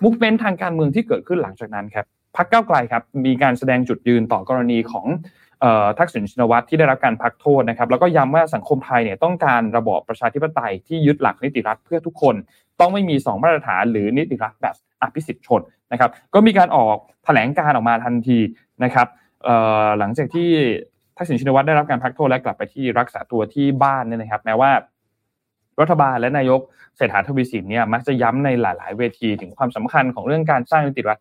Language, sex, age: Thai, male, 20-39